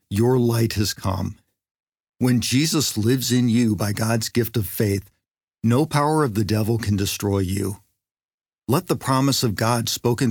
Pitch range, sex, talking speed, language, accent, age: 100-125 Hz, male, 165 wpm, English, American, 50-69